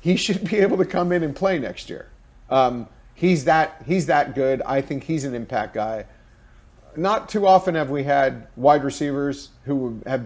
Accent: American